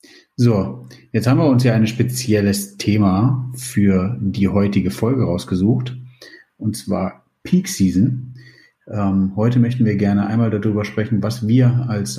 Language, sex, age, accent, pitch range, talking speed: German, male, 30-49, German, 95-120 Hz, 145 wpm